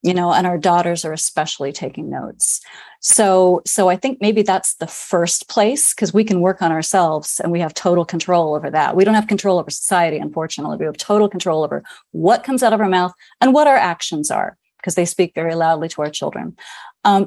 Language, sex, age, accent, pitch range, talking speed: English, female, 30-49, American, 175-235 Hz, 220 wpm